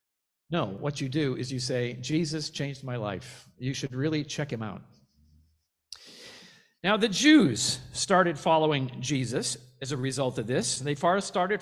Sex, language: male, English